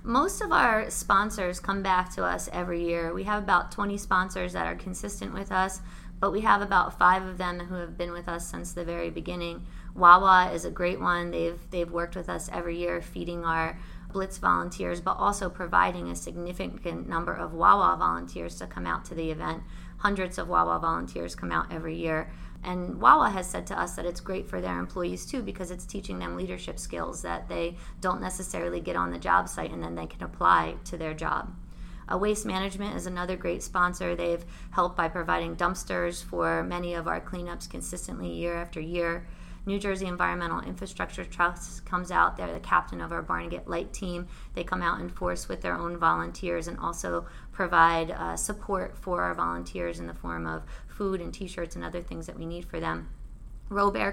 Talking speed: 200 wpm